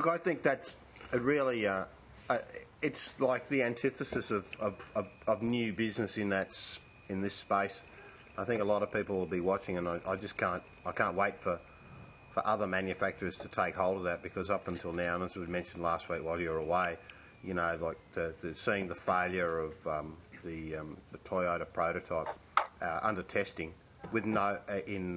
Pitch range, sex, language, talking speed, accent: 85-105 Hz, male, English, 205 wpm, Australian